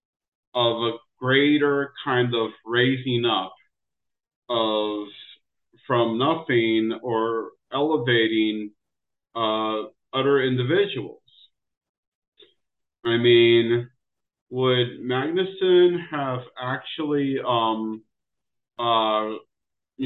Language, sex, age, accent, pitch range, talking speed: English, male, 40-59, American, 120-145 Hz, 70 wpm